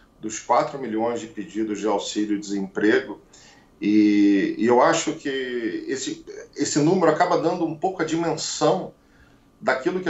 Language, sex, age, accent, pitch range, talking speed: Portuguese, male, 40-59, Brazilian, 115-150 Hz, 135 wpm